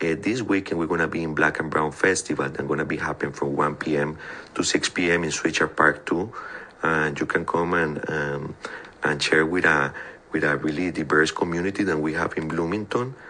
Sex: male